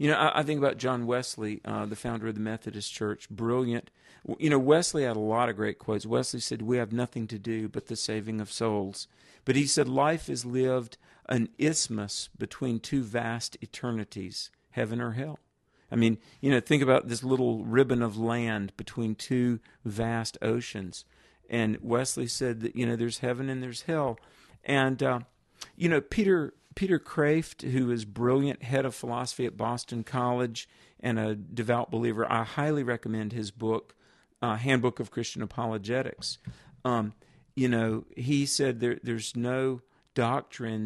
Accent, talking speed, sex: American, 170 wpm, male